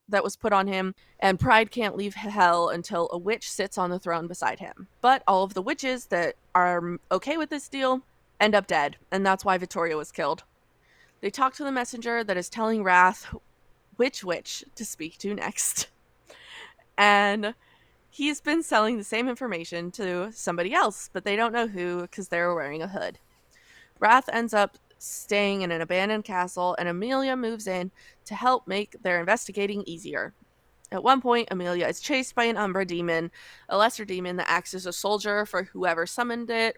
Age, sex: 20-39, female